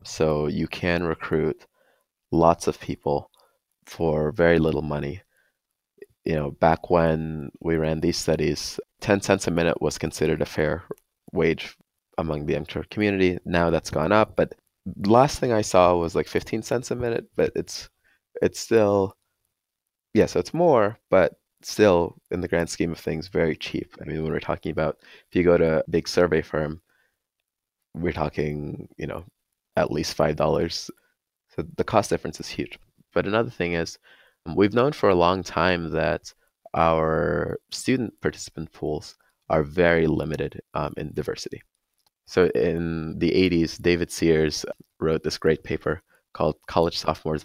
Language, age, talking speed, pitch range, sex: English, 20-39, 160 wpm, 80-90 Hz, male